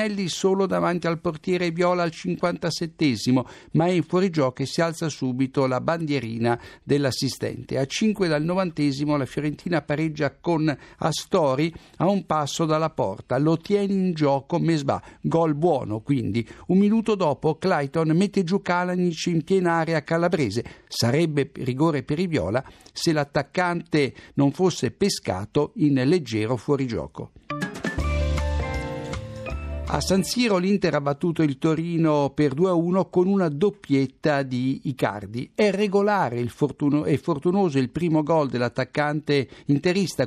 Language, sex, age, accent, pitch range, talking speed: Italian, male, 60-79, native, 140-180 Hz, 135 wpm